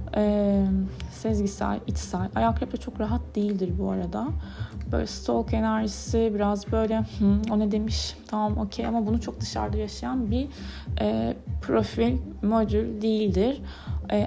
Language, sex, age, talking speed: Turkish, female, 20-39, 135 wpm